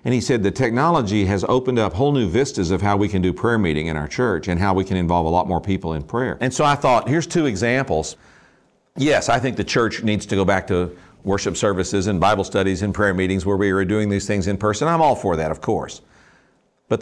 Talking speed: 255 wpm